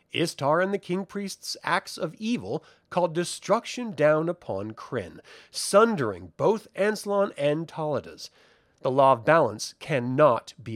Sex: male